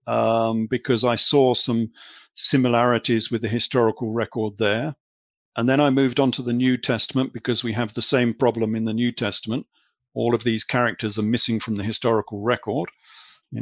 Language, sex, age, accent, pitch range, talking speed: English, male, 50-69, British, 115-135 Hz, 180 wpm